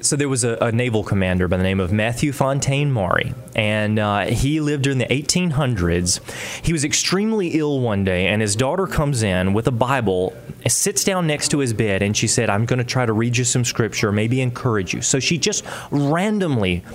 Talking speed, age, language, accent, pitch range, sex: 210 wpm, 30-49, English, American, 115-165 Hz, male